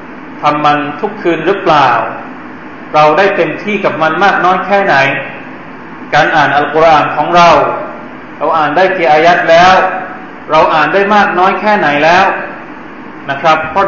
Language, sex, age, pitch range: Thai, male, 20-39, 145-195 Hz